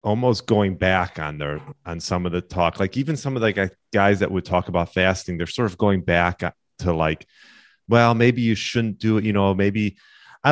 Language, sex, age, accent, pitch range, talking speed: English, male, 30-49, American, 90-110 Hz, 215 wpm